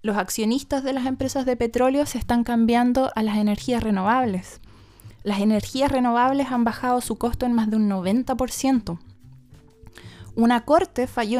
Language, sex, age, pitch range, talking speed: Spanish, female, 20-39, 215-265 Hz, 155 wpm